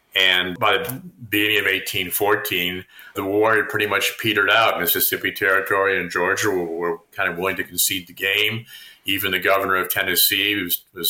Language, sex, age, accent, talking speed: English, male, 50-69, American, 180 wpm